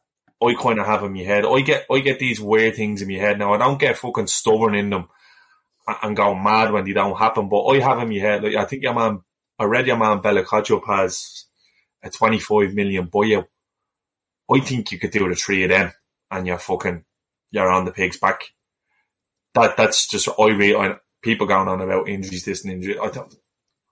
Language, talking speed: English, 225 wpm